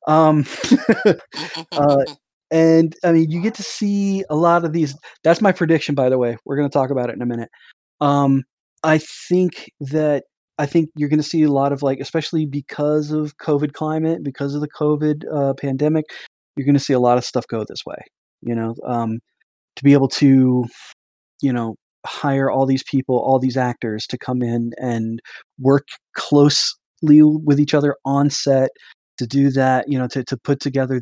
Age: 20-39